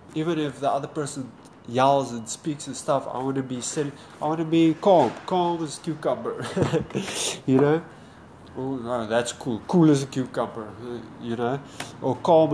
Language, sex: English, male